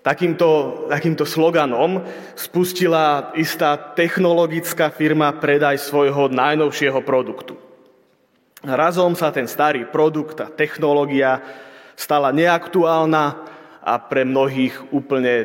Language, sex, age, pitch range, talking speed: Slovak, male, 30-49, 145-175 Hz, 95 wpm